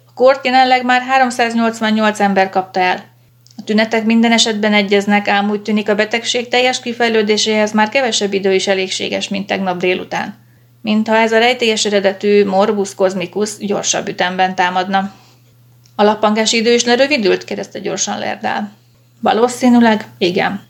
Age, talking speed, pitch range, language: 30-49, 135 wpm, 190-220 Hz, Hungarian